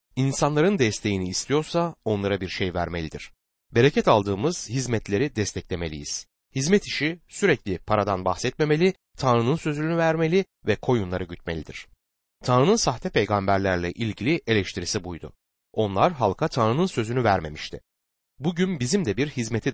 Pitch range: 95-150 Hz